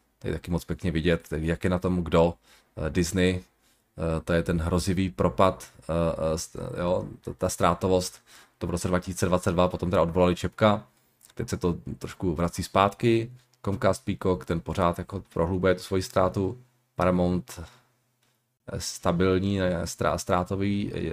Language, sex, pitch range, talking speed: Czech, male, 85-110 Hz, 130 wpm